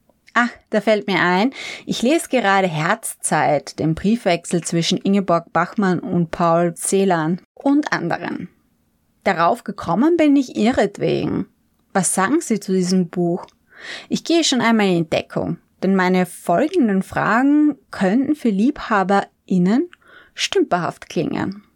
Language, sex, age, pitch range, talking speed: German, female, 20-39, 180-235 Hz, 125 wpm